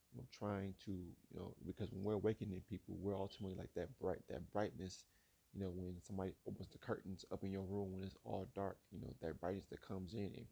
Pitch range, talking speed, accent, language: 95-110 Hz, 230 wpm, American, English